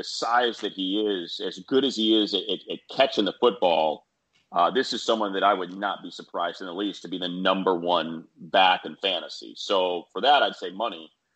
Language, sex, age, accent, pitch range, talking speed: English, male, 30-49, American, 95-110 Hz, 220 wpm